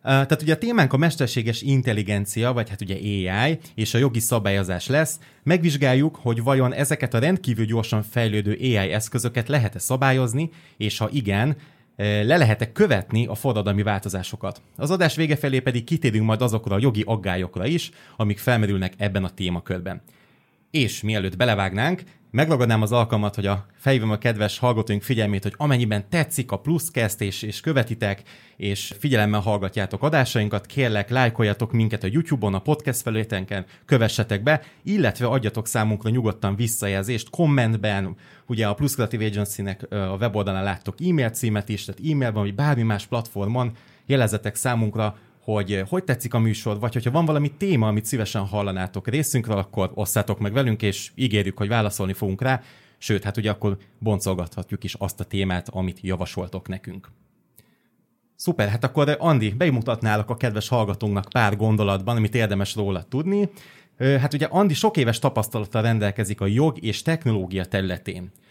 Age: 30-49